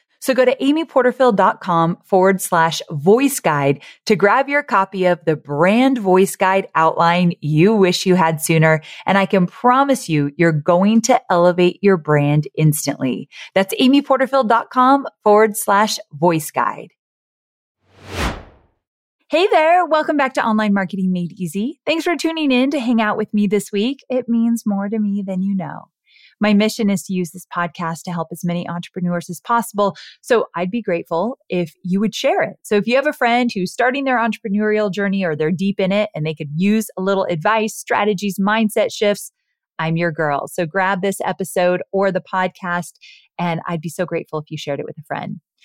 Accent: American